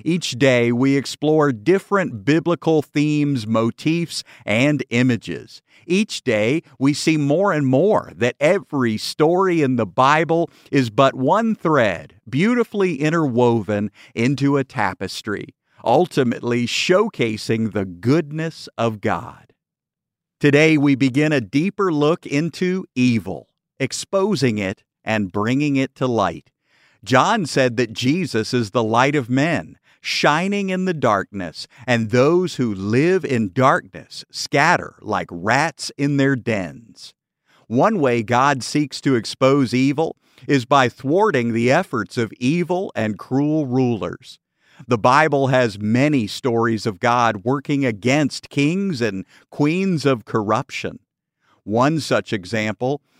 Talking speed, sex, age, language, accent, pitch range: 125 wpm, male, 50-69, English, American, 120-150 Hz